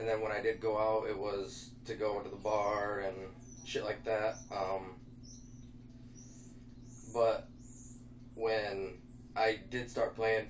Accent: American